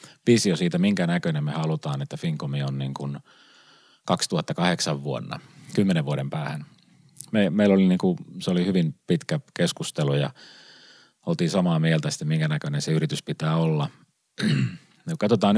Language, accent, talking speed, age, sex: Finnish, native, 145 wpm, 30-49, male